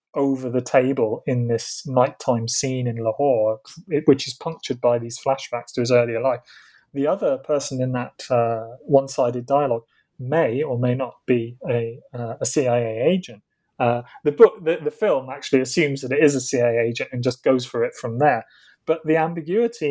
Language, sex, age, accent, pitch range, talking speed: English, male, 30-49, British, 125-155 Hz, 180 wpm